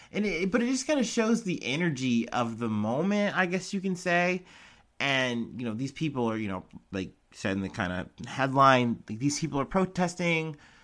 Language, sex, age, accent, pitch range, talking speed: English, male, 30-49, American, 110-140 Hz, 195 wpm